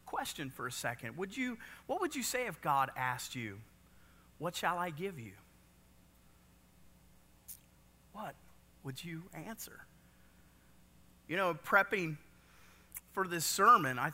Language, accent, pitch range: English, American, 135-200 Hz